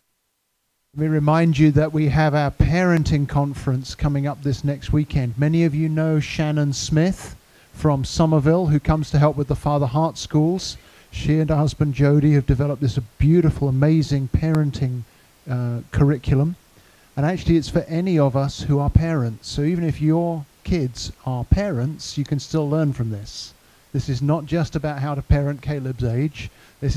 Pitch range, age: 130-155 Hz, 50-69